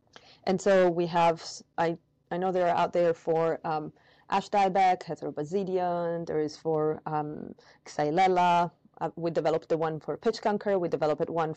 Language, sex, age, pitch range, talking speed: English, female, 20-39, 155-185 Hz, 165 wpm